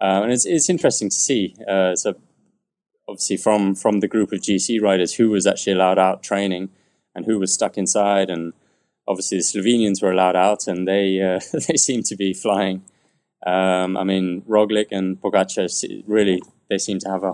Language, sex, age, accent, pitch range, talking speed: English, male, 20-39, British, 90-100 Hz, 190 wpm